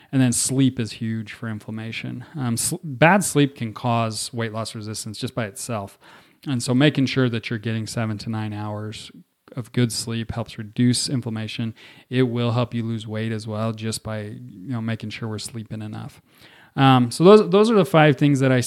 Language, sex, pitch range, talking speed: English, male, 115-140 Hz, 205 wpm